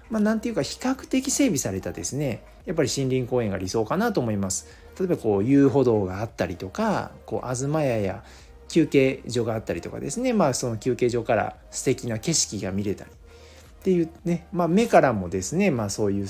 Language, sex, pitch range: Japanese, male, 95-145 Hz